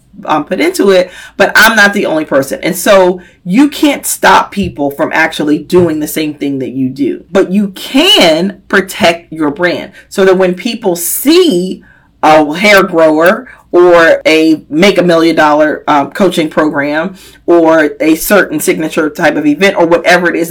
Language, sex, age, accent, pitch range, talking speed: English, female, 40-59, American, 170-245 Hz, 175 wpm